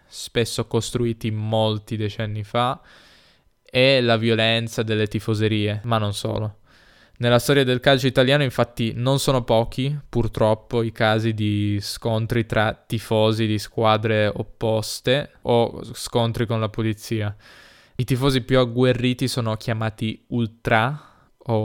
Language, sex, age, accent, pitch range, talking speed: Italian, male, 10-29, native, 110-120 Hz, 125 wpm